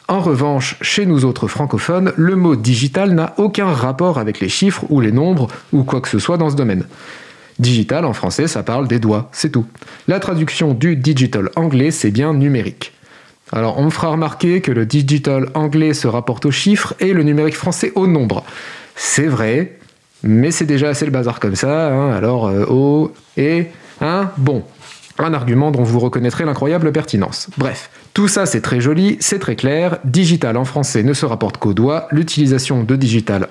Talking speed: 215 wpm